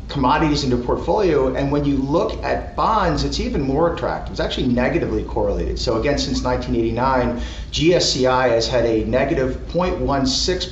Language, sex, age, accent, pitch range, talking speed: English, male, 30-49, American, 120-155 Hz, 150 wpm